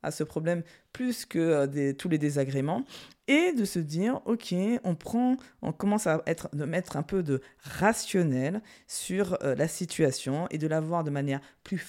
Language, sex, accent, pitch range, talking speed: French, female, French, 150-230 Hz, 190 wpm